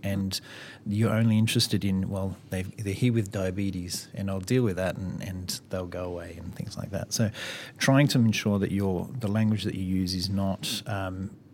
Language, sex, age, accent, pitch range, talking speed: English, male, 30-49, Australian, 95-115 Hz, 190 wpm